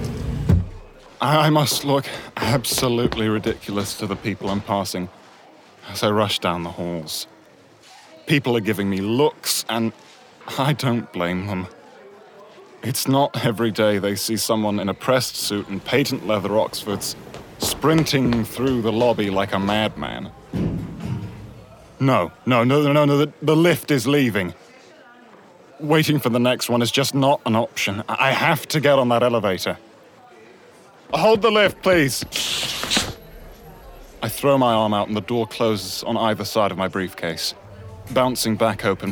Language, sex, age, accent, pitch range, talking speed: English, male, 30-49, British, 95-120 Hz, 150 wpm